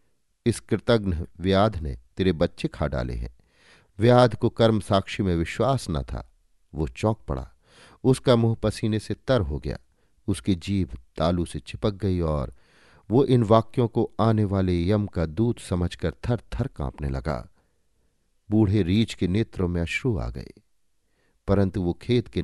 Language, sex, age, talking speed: Hindi, male, 50-69, 160 wpm